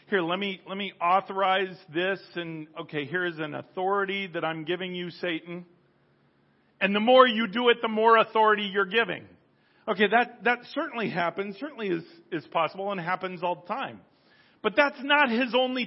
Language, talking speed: English, 180 wpm